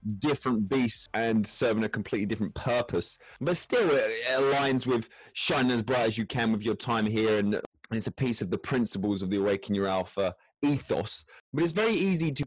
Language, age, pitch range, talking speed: English, 20-39, 110-145 Hz, 195 wpm